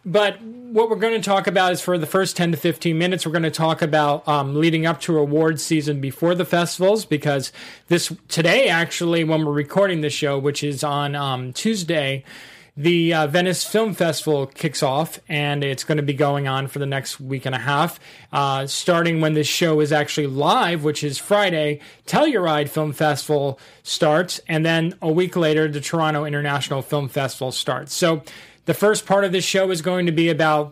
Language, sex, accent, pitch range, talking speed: English, male, American, 145-180 Hz, 200 wpm